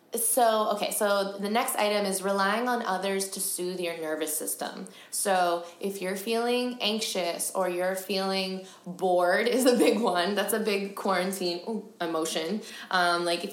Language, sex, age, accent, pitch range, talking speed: English, female, 20-39, American, 175-215 Hz, 160 wpm